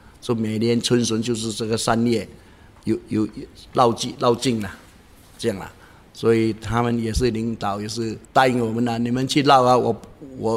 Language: Chinese